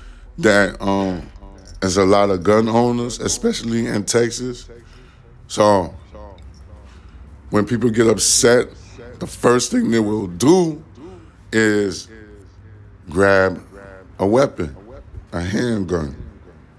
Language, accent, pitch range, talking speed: English, American, 95-120 Hz, 100 wpm